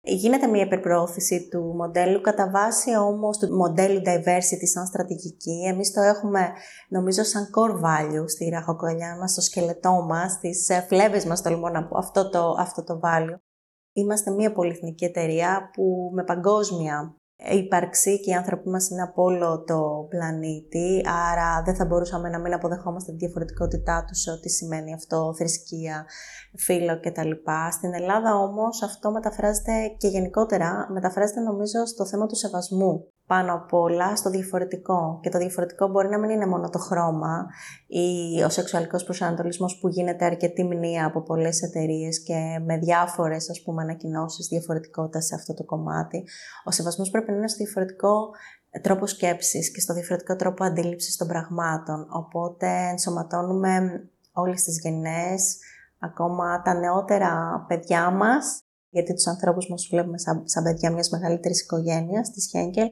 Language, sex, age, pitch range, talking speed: Greek, female, 20-39, 170-190 Hz, 145 wpm